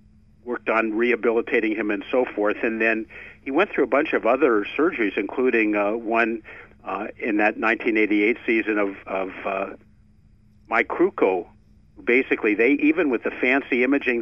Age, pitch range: 50-69, 105-125 Hz